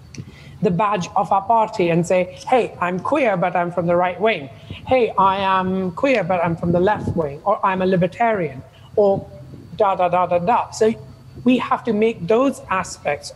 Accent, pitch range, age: British, 155-215 Hz, 30-49